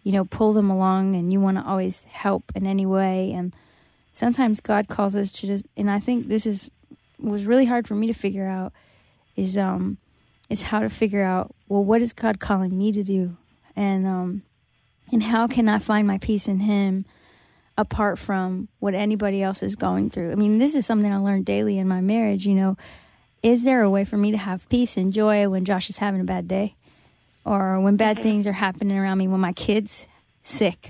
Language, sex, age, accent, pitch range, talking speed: English, female, 20-39, American, 190-215 Hz, 215 wpm